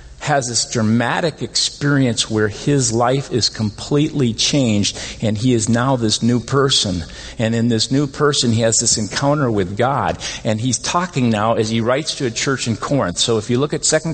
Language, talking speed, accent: English, 195 wpm, American